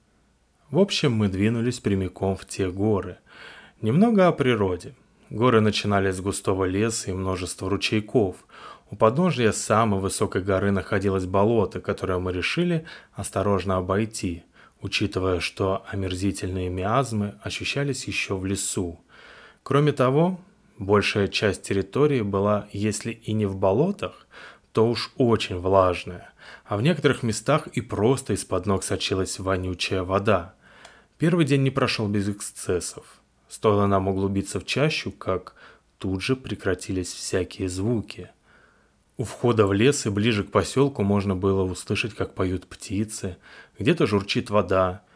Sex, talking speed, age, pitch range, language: male, 130 wpm, 20-39, 95-115 Hz, Russian